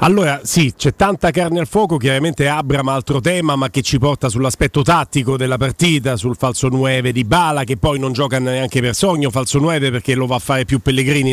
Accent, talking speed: native, 215 wpm